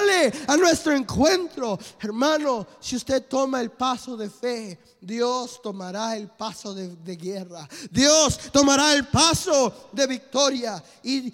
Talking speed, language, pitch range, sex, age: 130 wpm, English, 230-290 Hz, male, 20-39